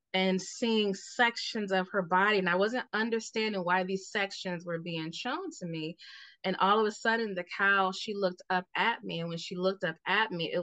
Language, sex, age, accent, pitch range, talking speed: English, female, 20-39, American, 175-210 Hz, 215 wpm